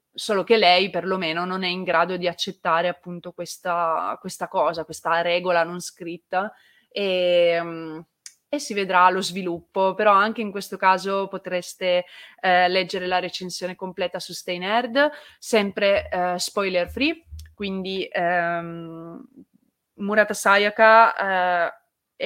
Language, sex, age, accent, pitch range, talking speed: Italian, female, 20-39, native, 170-195 Hz, 125 wpm